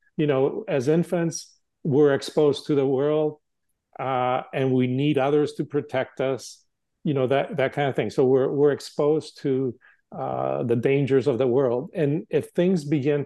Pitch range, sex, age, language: 125-155 Hz, male, 50-69, English